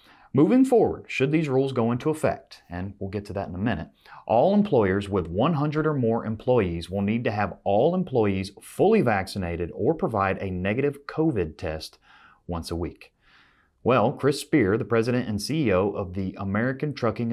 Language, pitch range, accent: English, 95-120 Hz, American